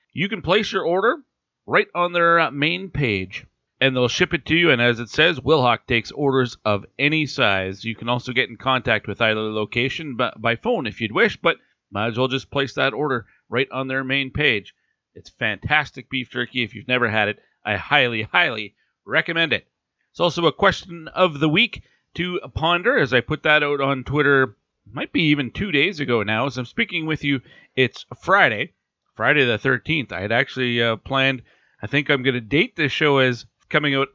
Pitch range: 120-150 Hz